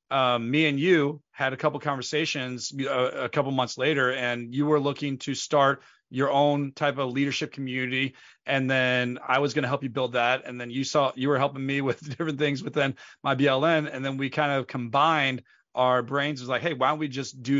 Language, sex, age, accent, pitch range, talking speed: English, male, 30-49, American, 130-155 Hz, 225 wpm